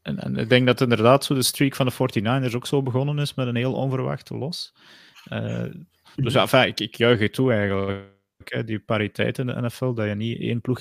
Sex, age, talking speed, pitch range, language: male, 30-49, 230 wpm, 110-135 Hz, Dutch